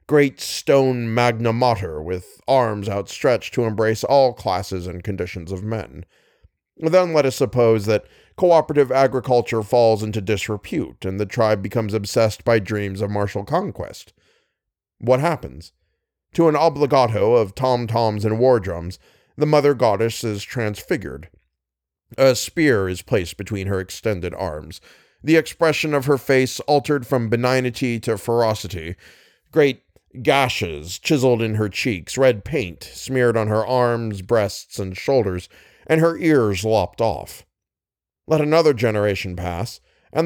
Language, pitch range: English, 100-130 Hz